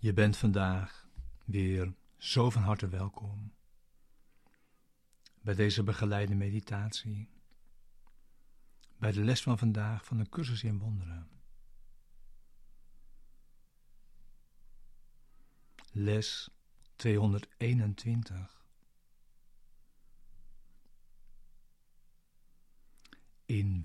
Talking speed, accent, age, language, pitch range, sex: 65 wpm, Dutch, 60-79, Dutch, 100-115 Hz, male